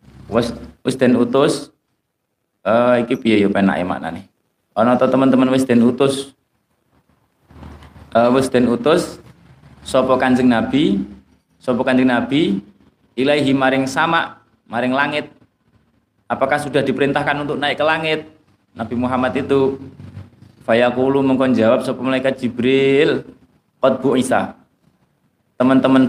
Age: 30-49